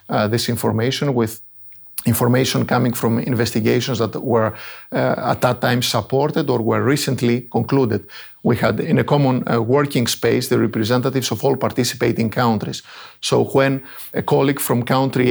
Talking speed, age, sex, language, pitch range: 155 wpm, 50-69, male, English, 115-130 Hz